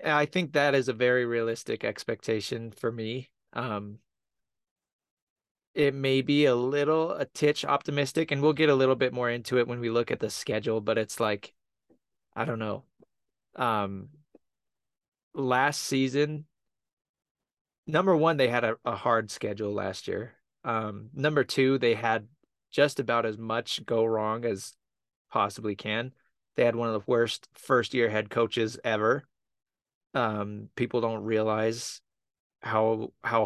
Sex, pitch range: male, 110-135 Hz